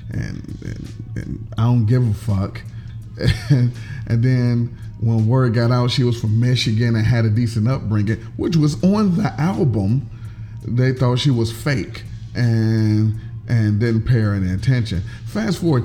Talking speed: 165 wpm